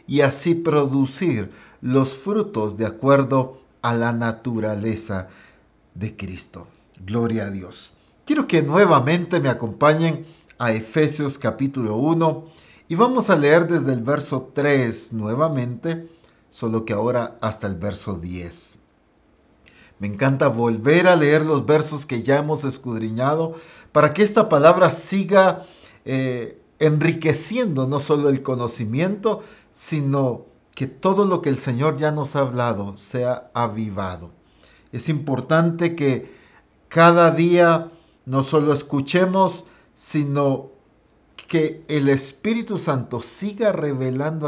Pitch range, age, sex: 115-160 Hz, 50-69, male